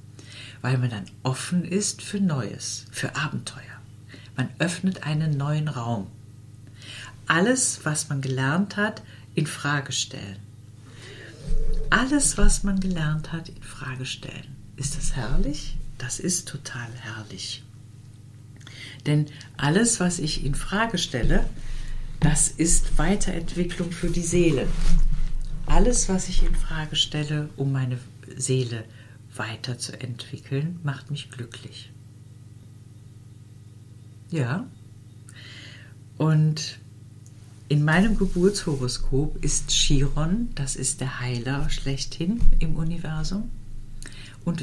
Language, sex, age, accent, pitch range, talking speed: German, female, 60-79, German, 120-160 Hz, 105 wpm